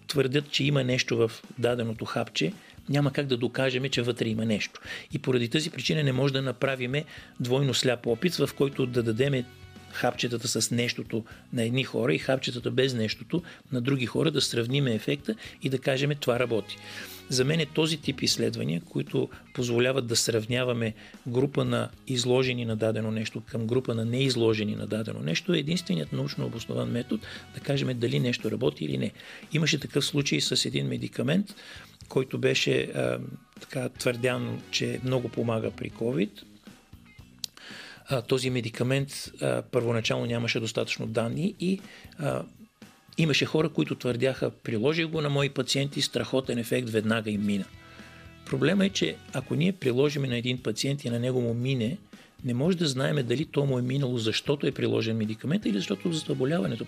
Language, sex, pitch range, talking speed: Bulgarian, male, 115-145 Hz, 165 wpm